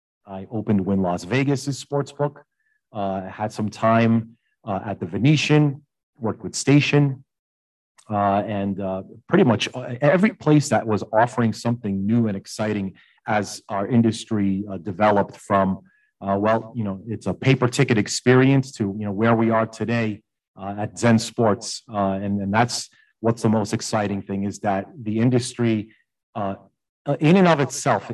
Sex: male